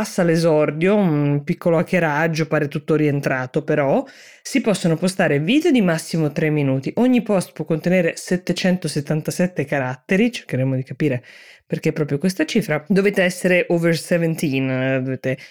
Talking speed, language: 140 wpm, Italian